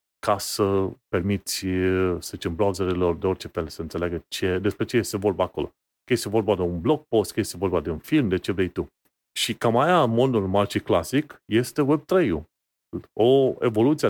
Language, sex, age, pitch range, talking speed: Romanian, male, 30-49, 95-125 Hz, 195 wpm